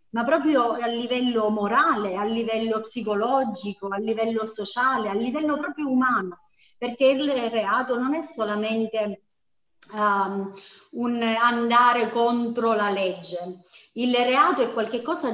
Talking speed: 115 wpm